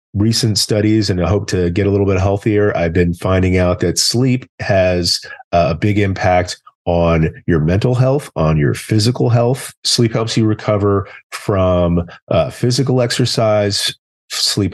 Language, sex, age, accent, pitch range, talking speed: English, male, 40-59, American, 85-105 Hz, 155 wpm